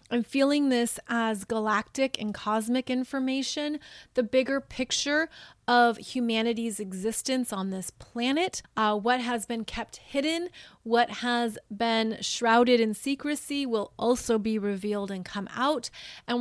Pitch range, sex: 220-255 Hz, female